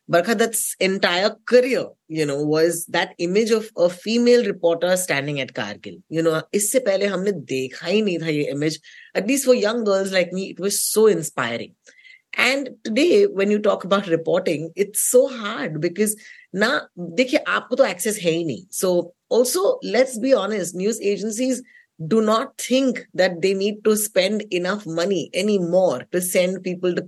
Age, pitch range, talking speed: 20-39, 170-240 Hz, 175 wpm